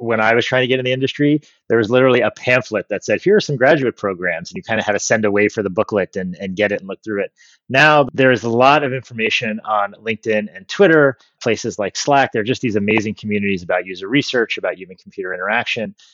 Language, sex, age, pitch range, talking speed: English, male, 30-49, 105-135 Hz, 245 wpm